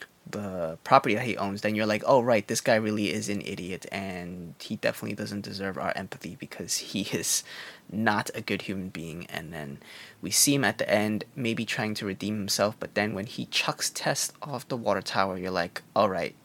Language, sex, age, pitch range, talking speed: English, male, 20-39, 100-120 Hz, 210 wpm